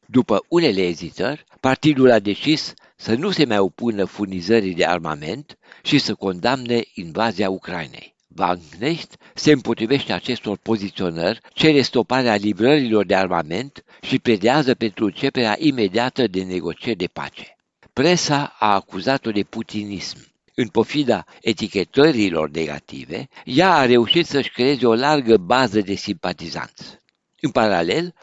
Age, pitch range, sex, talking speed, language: 60-79, 100-145 Hz, male, 130 wpm, Romanian